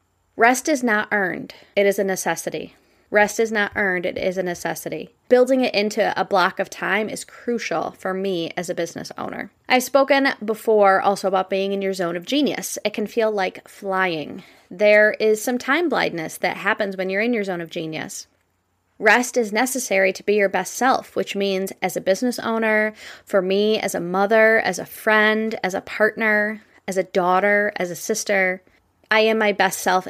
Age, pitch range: 20-39, 185-225 Hz